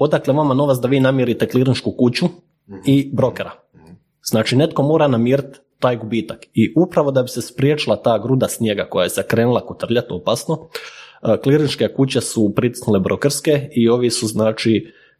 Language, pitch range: Croatian, 110-130 Hz